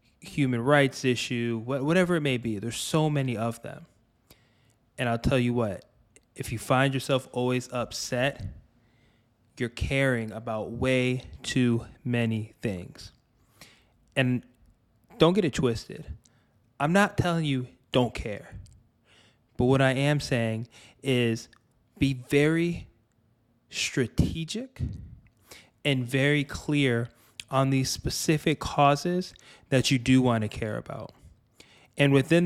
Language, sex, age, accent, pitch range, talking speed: English, male, 20-39, American, 115-135 Hz, 120 wpm